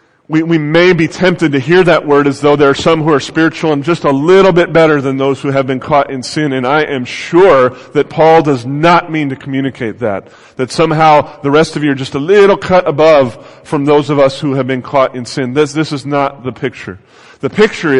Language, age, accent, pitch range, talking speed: English, 30-49, American, 140-170 Hz, 245 wpm